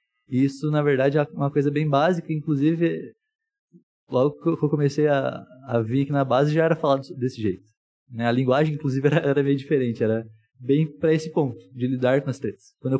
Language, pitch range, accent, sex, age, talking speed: Portuguese, 130-180 Hz, Brazilian, male, 20-39, 205 wpm